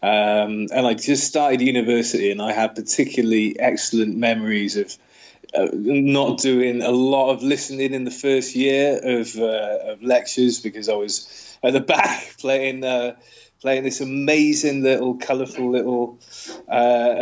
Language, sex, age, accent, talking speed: English, male, 20-39, British, 150 wpm